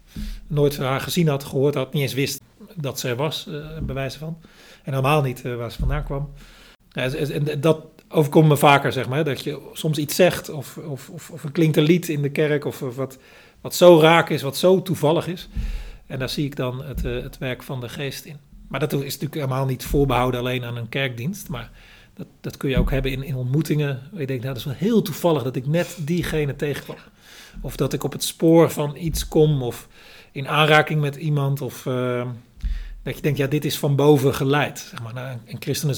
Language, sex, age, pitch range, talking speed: Dutch, male, 40-59, 130-155 Hz, 215 wpm